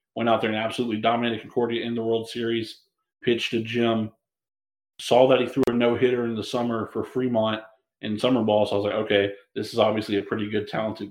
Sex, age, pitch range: male, 30-49, 110-130 Hz